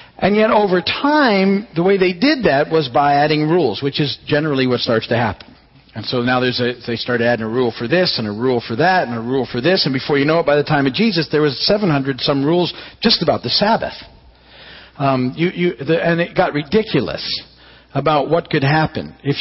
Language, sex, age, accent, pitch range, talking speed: English, male, 50-69, American, 135-180 Hz, 225 wpm